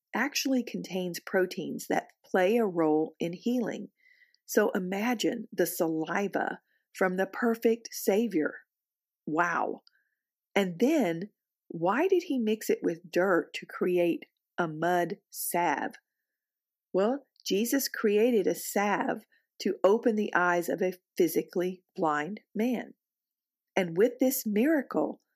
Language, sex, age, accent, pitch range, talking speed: English, female, 40-59, American, 175-245 Hz, 120 wpm